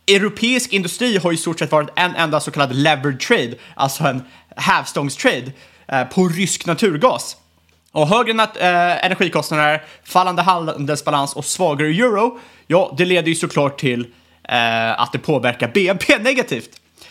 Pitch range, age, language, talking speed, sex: 140-190 Hz, 30-49, Swedish, 135 wpm, male